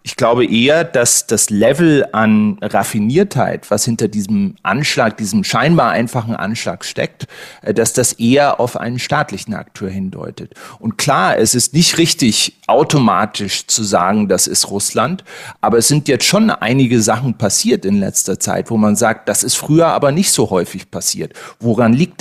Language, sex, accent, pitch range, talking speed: German, male, German, 110-145 Hz, 165 wpm